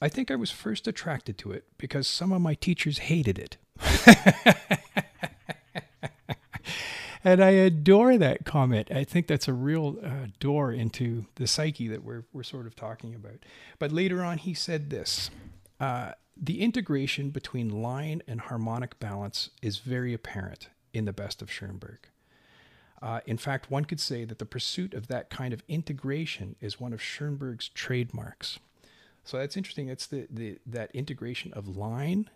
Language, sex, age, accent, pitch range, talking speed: English, male, 40-59, American, 110-145 Hz, 165 wpm